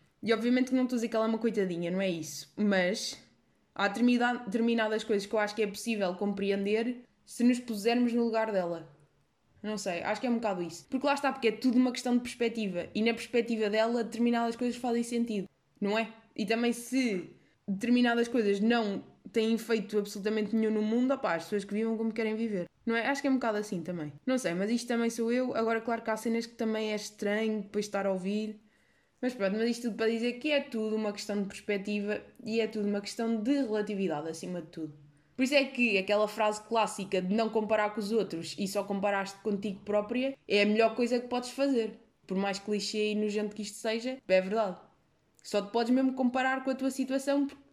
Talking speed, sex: 225 wpm, female